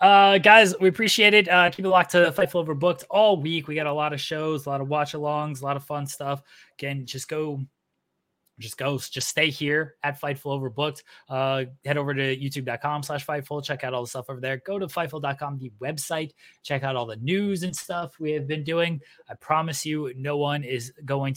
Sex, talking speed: male, 220 wpm